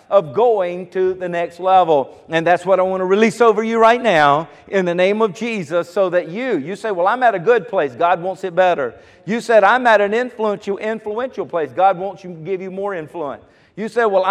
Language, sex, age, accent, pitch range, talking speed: English, male, 50-69, American, 185-235 Hz, 235 wpm